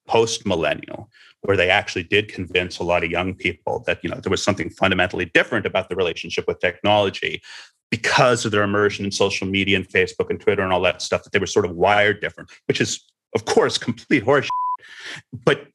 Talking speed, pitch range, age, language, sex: 200 wpm, 95-120 Hz, 30-49, English, male